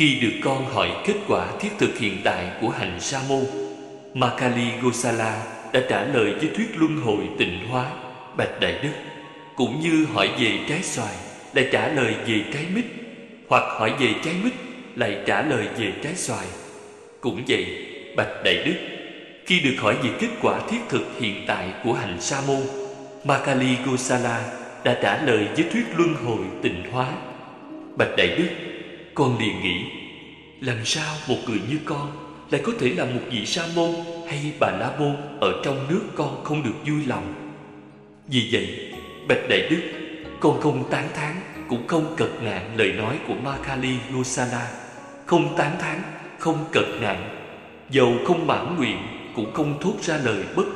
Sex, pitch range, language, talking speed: male, 125-160 Hz, Vietnamese, 175 wpm